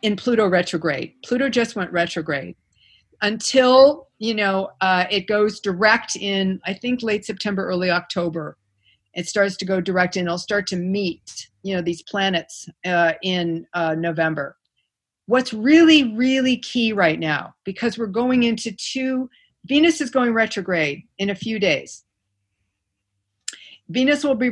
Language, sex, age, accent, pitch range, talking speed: English, female, 50-69, American, 170-245 Hz, 150 wpm